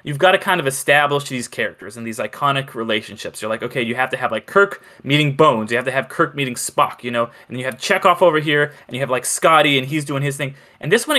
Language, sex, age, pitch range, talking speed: English, male, 20-39, 130-190 Hz, 275 wpm